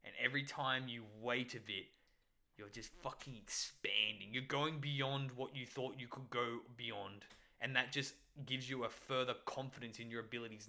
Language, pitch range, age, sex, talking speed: English, 105-130 Hz, 10-29, male, 180 wpm